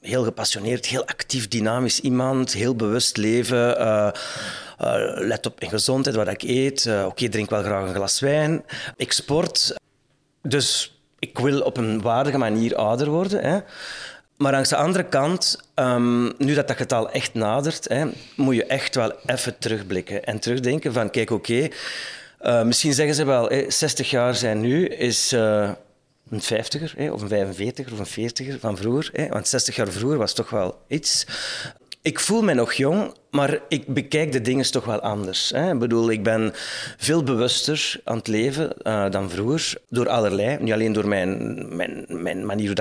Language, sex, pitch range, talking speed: Dutch, male, 110-135 Hz, 180 wpm